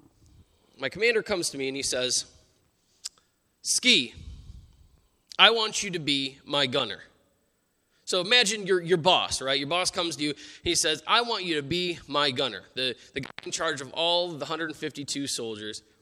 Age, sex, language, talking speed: 20-39, male, English, 170 wpm